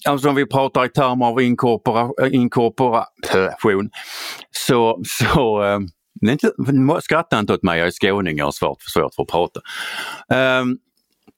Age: 50-69